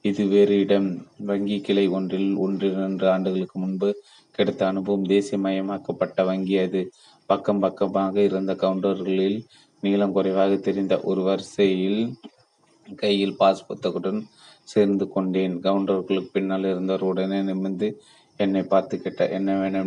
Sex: male